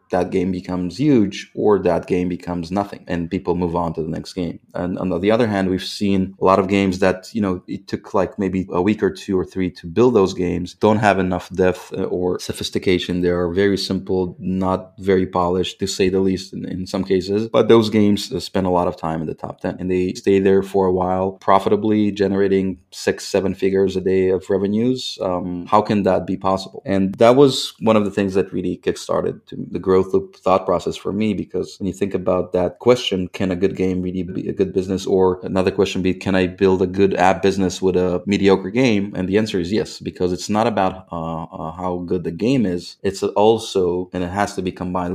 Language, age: English, 30-49